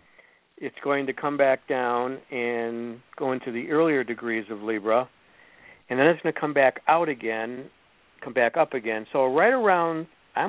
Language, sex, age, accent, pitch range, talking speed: English, male, 60-79, American, 115-160 Hz, 175 wpm